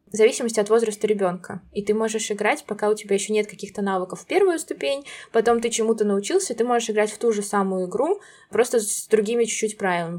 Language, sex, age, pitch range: Russian, female, 20-39, 195-225 Hz